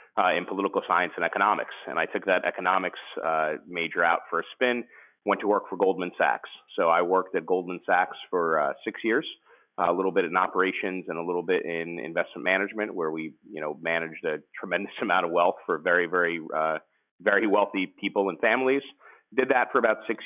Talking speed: 205 wpm